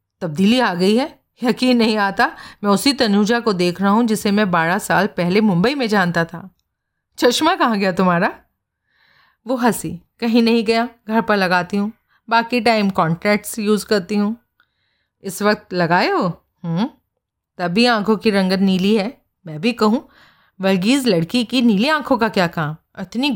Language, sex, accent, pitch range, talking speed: Hindi, female, native, 185-240 Hz, 160 wpm